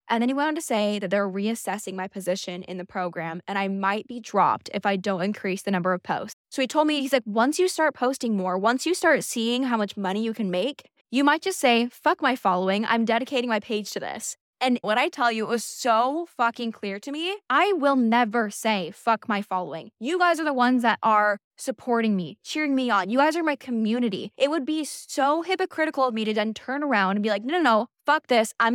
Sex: female